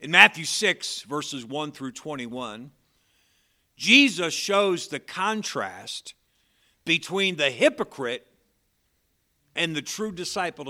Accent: American